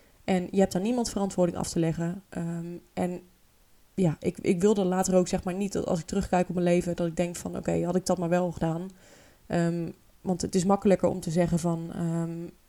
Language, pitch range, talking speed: Dutch, 175-195 Hz, 230 wpm